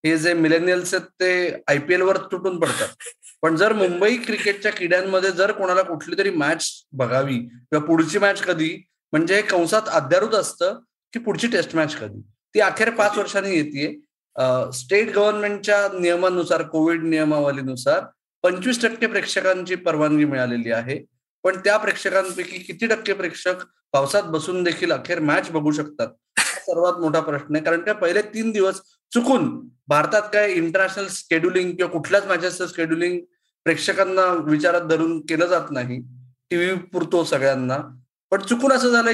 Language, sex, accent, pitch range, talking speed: Marathi, male, native, 160-205 Hz, 125 wpm